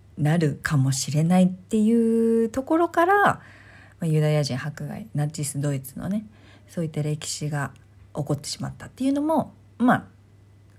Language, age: Japanese, 40-59